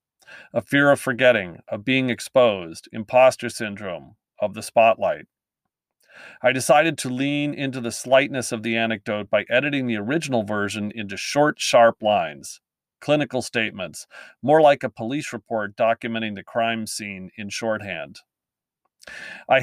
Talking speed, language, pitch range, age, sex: 140 wpm, English, 105-135 Hz, 40-59, male